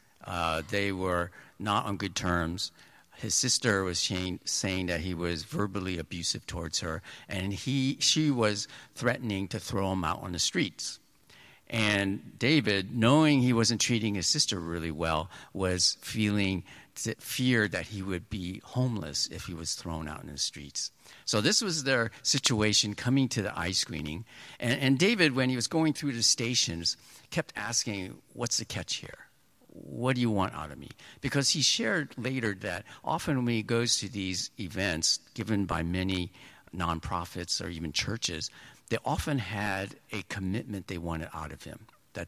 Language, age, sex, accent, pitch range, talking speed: English, 60-79, male, American, 90-120 Hz, 170 wpm